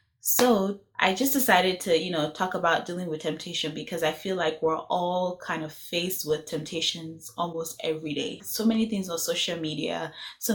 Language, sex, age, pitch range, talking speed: English, female, 10-29, 160-205 Hz, 190 wpm